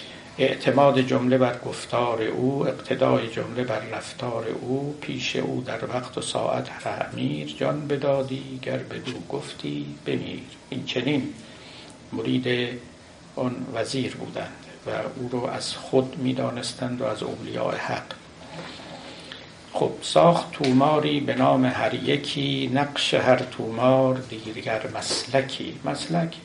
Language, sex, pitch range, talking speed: Persian, male, 115-135 Hz, 120 wpm